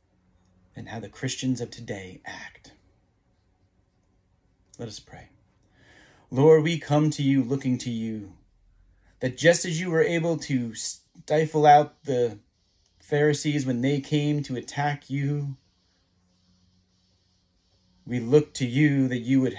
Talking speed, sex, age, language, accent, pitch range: 130 wpm, male, 30-49, English, American, 90-140 Hz